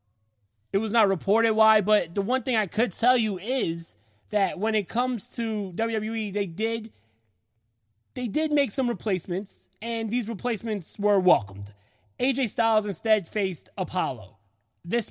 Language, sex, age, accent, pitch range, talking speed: English, male, 20-39, American, 155-225 Hz, 150 wpm